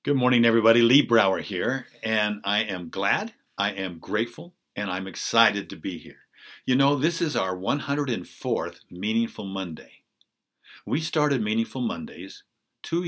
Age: 50-69